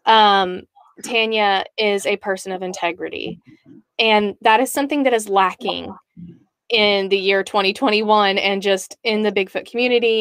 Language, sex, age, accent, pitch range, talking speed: English, female, 20-39, American, 200-255 Hz, 140 wpm